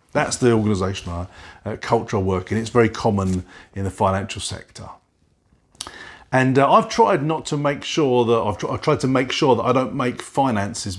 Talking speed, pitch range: 195 wpm, 105-140 Hz